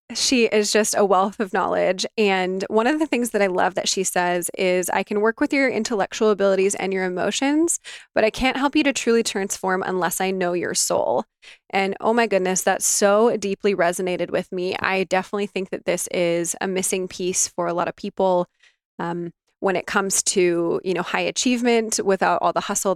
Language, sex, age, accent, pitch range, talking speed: English, female, 20-39, American, 180-215 Hz, 205 wpm